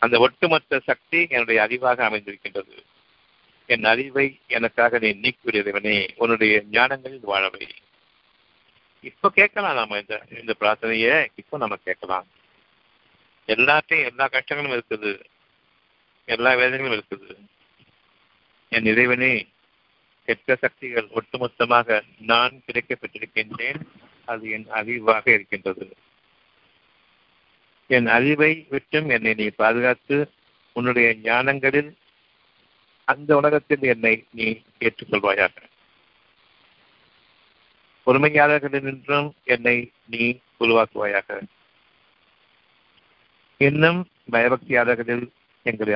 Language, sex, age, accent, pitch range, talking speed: Tamil, male, 50-69, native, 115-145 Hz, 80 wpm